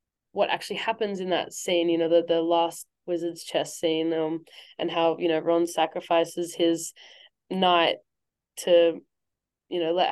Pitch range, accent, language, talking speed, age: 170-195 Hz, Australian, English, 160 wpm, 20-39